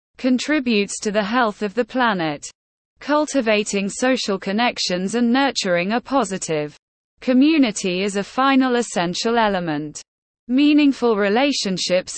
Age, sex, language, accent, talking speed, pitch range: 20-39, female, English, British, 110 wpm, 180-245 Hz